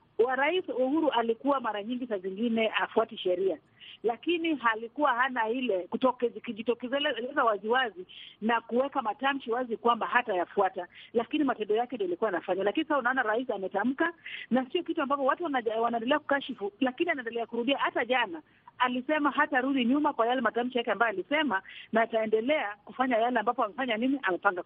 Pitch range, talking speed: 215-275 Hz, 155 wpm